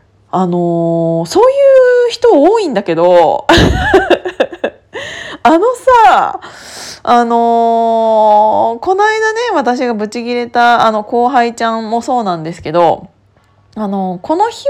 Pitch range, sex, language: 175-255 Hz, female, Japanese